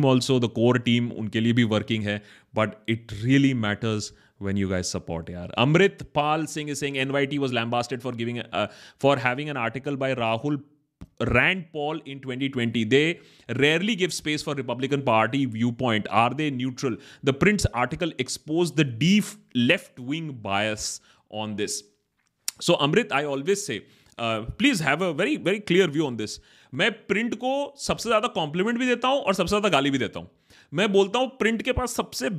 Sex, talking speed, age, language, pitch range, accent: male, 160 wpm, 30-49, Hindi, 115-175 Hz, native